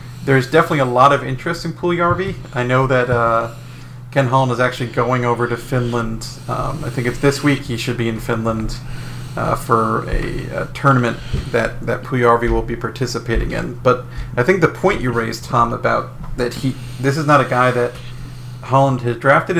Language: English